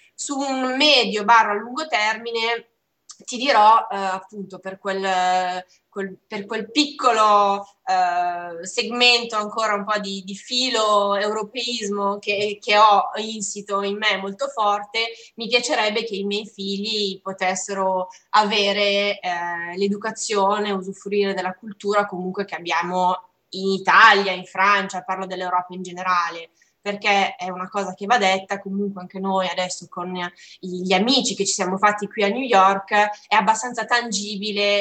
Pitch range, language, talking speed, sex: 190-215 Hz, Italian, 140 wpm, female